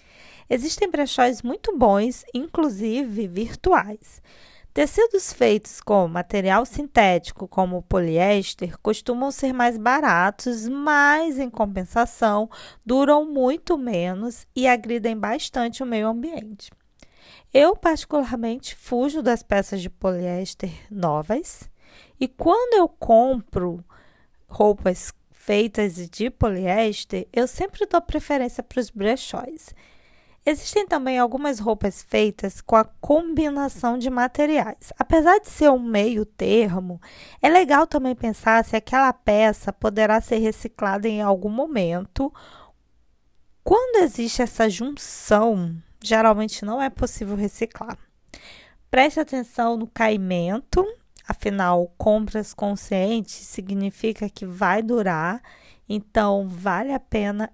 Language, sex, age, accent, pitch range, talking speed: Portuguese, female, 20-39, Brazilian, 205-270 Hz, 110 wpm